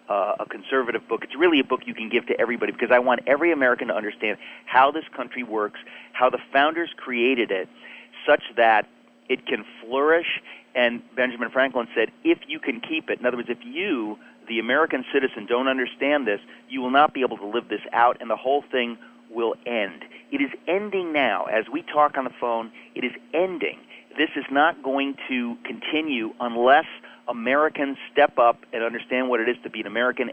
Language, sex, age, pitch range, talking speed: English, male, 40-59, 120-150 Hz, 200 wpm